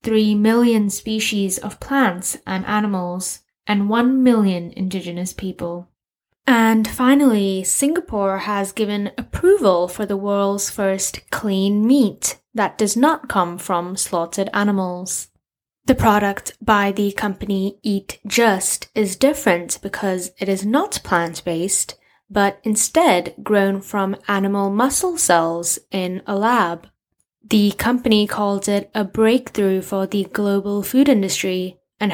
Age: 10-29